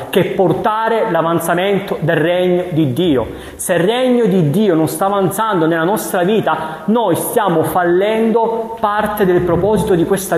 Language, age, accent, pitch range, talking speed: Italian, 20-39, native, 170-210 Hz, 150 wpm